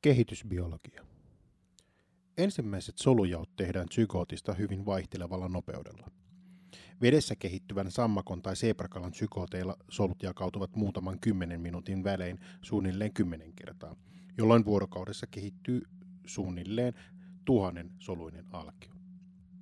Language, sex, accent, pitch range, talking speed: Finnish, male, native, 90-115 Hz, 90 wpm